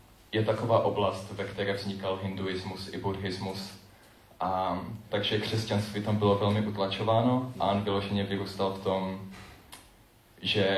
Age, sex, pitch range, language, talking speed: 20-39, male, 95-105 Hz, Czech, 130 wpm